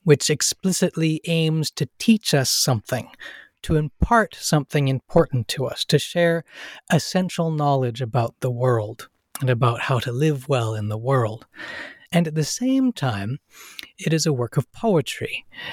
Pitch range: 130-175 Hz